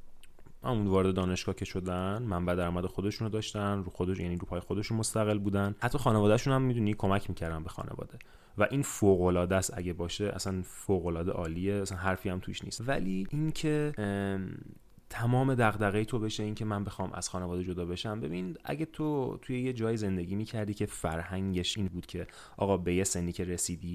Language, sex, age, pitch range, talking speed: Persian, male, 30-49, 90-110 Hz, 180 wpm